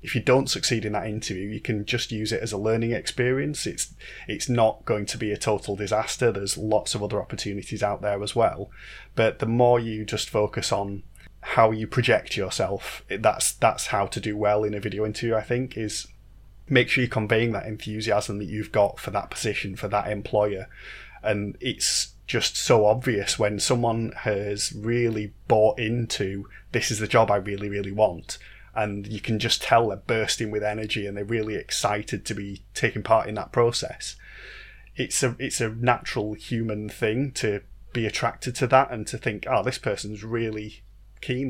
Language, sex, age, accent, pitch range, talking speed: English, male, 20-39, British, 105-120 Hz, 190 wpm